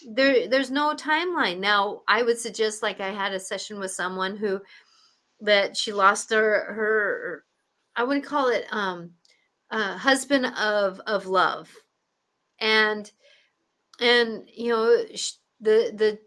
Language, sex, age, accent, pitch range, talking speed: English, female, 40-59, American, 200-260 Hz, 135 wpm